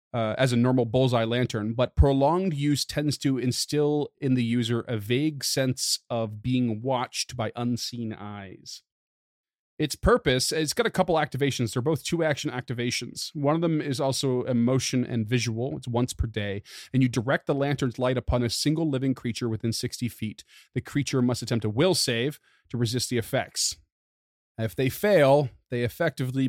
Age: 30-49